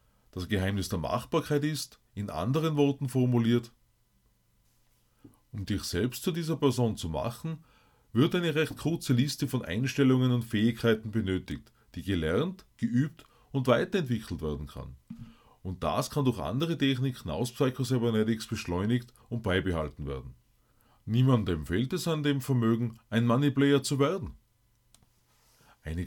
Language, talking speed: German, 135 wpm